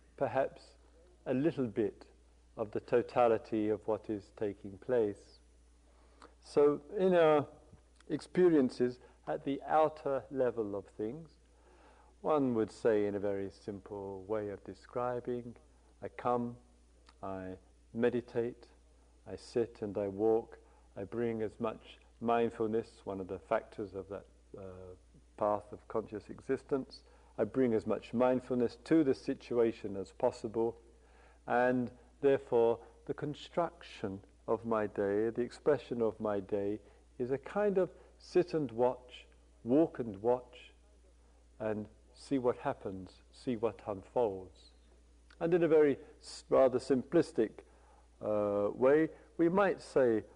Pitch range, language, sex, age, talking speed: 100-130 Hz, English, male, 50-69, 125 wpm